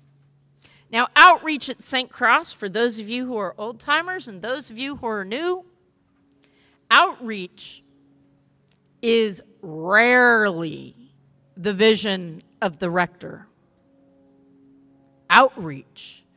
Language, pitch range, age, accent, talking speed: English, 165-265 Hz, 50-69, American, 105 wpm